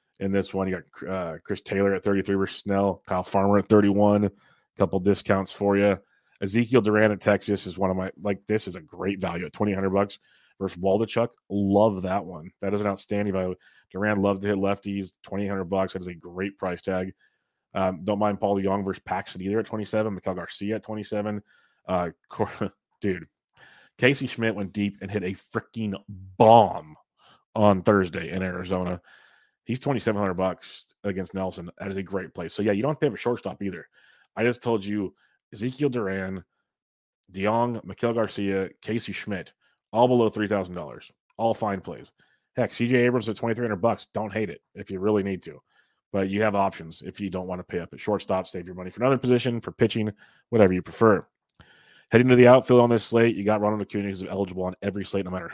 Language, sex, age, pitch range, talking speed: English, male, 30-49, 95-110 Hz, 205 wpm